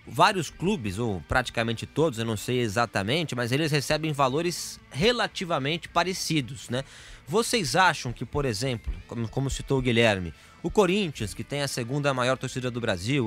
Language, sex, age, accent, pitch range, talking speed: English, male, 20-39, Brazilian, 120-165 Hz, 160 wpm